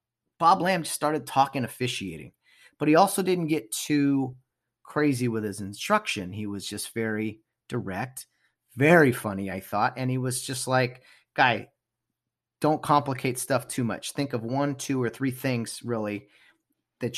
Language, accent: English, American